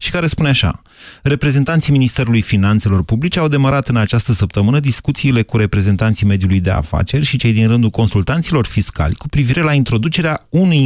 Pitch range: 105-140 Hz